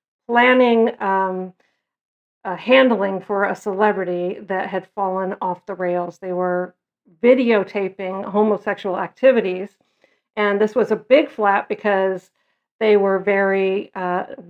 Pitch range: 195-235 Hz